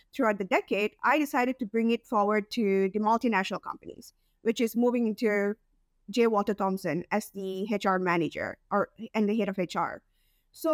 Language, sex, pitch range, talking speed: English, female, 200-255 Hz, 175 wpm